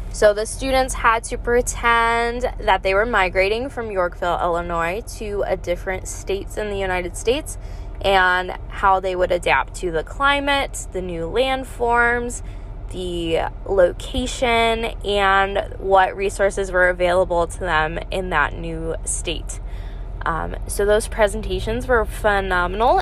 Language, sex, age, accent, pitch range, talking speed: English, female, 10-29, American, 185-235 Hz, 135 wpm